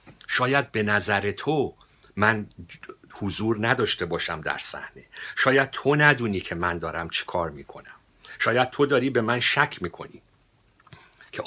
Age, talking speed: 50-69, 140 wpm